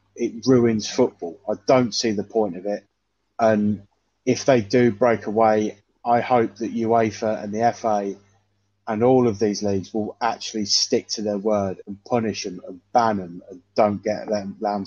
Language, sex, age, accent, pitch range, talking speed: English, male, 20-39, British, 100-125 Hz, 180 wpm